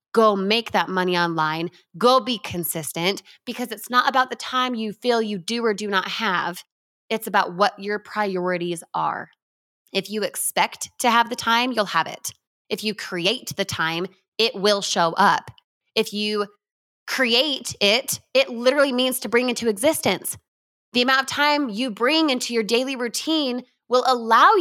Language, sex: English, female